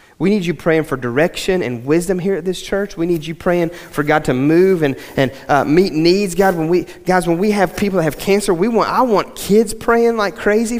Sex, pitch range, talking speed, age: male, 145-190 Hz, 245 wpm, 30-49